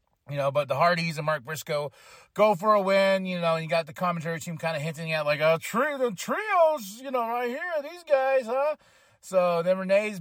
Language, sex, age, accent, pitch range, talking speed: English, male, 30-49, American, 165-255 Hz, 235 wpm